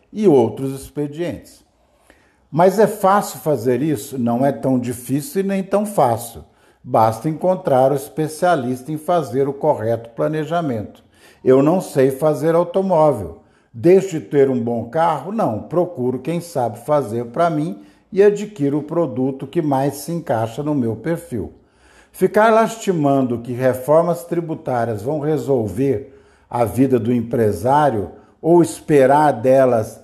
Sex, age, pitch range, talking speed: male, 60-79, 125-175 Hz, 135 wpm